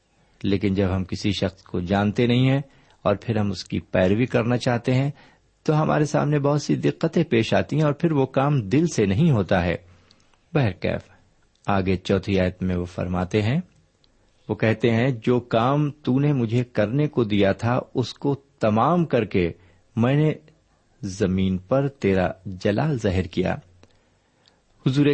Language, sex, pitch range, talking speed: Urdu, male, 95-135 Hz, 170 wpm